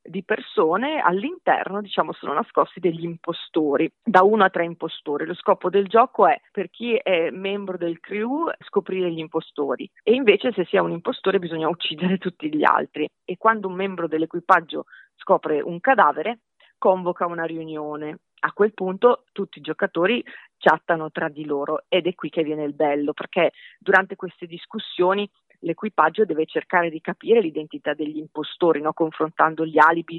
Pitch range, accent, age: 160-195 Hz, native, 40-59